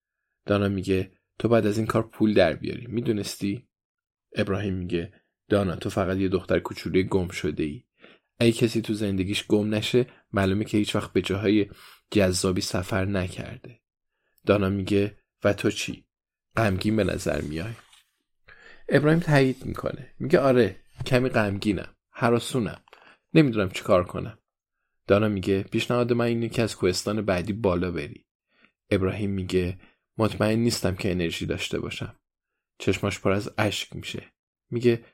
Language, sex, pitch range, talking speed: Persian, male, 95-120 Hz, 140 wpm